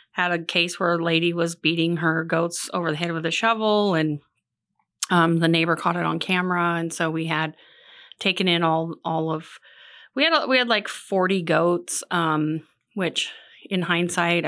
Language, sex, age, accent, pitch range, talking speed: English, female, 30-49, American, 155-180 Hz, 180 wpm